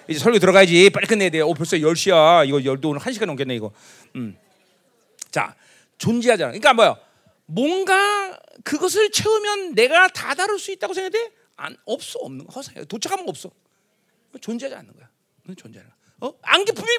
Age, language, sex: 40-59, Korean, male